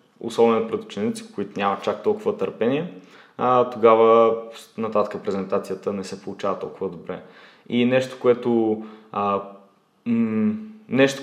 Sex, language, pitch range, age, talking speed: male, Bulgarian, 110-140 Hz, 20-39, 105 wpm